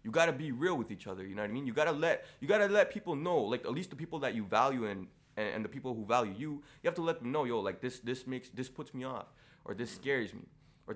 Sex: male